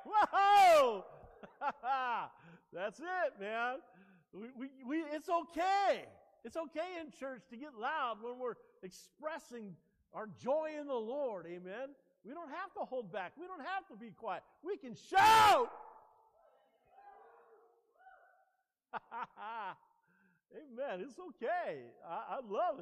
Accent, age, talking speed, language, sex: American, 50-69, 120 wpm, English, male